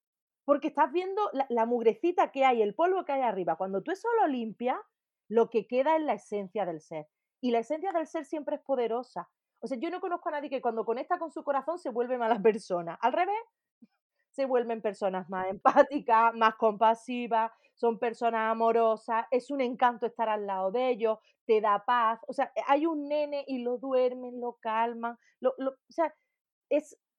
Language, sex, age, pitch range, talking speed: Spanish, female, 30-49, 210-295 Hz, 195 wpm